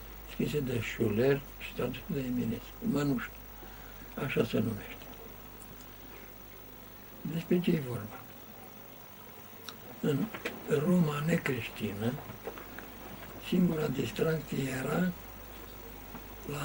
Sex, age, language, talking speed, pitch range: male, 60-79, Romanian, 85 wpm, 115-165 Hz